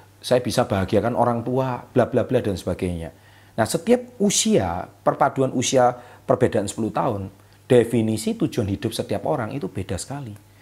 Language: Indonesian